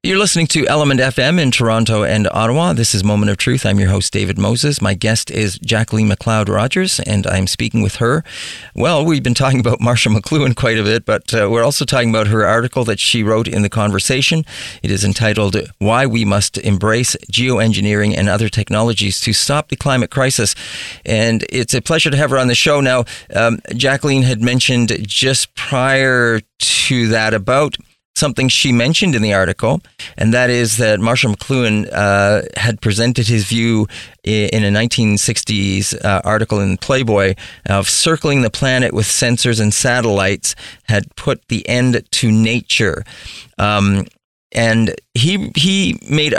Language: English